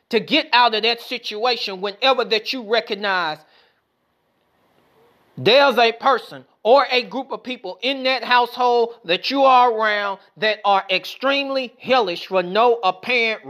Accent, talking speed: American, 140 wpm